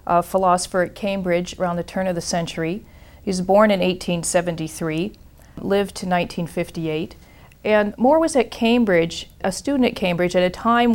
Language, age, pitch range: English, 40-59, 165-200 Hz